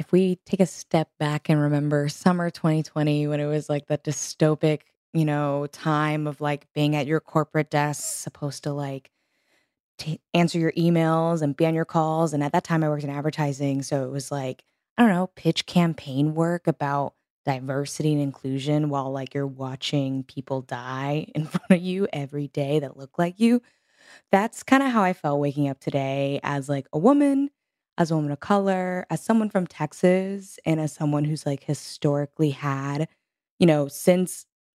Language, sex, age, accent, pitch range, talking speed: English, female, 20-39, American, 145-165 Hz, 185 wpm